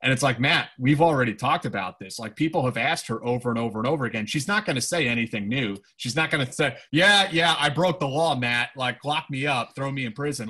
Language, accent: English, American